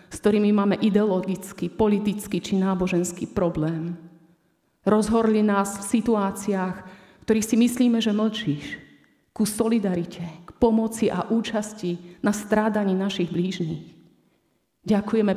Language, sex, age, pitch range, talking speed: Slovak, female, 30-49, 180-215 Hz, 115 wpm